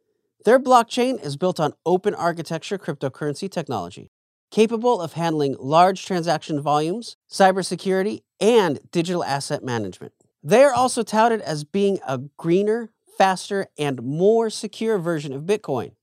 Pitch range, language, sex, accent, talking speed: 145-210 Hz, English, male, American, 130 wpm